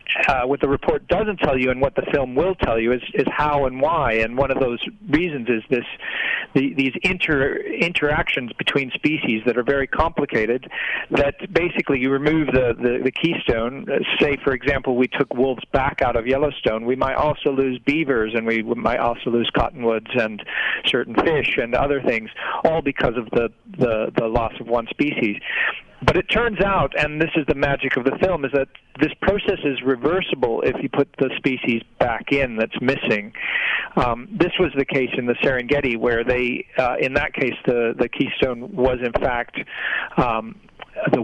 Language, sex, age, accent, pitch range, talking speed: English, male, 40-59, American, 125-150 Hz, 190 wpm